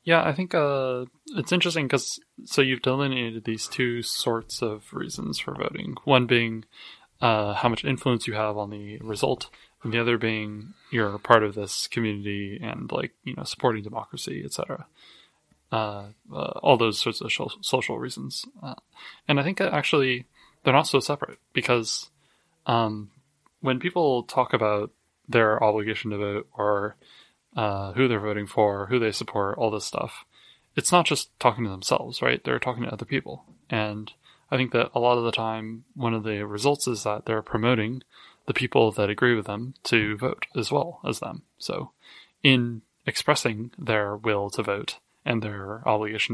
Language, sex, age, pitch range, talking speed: English, male, 20-39, 105-125 Hz, 175 wpm